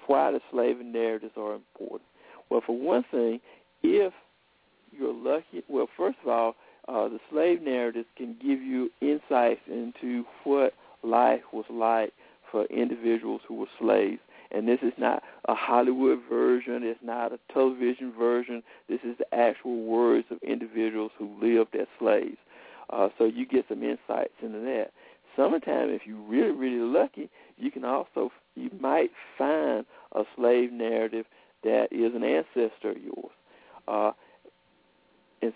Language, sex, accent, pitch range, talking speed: English, male, American, 110-130 Hz, 150 wpm